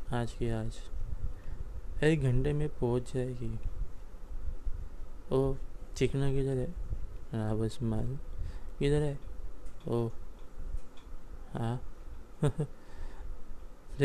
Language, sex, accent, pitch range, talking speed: Marathi, male, native, 85-130 Hz, 65 wpm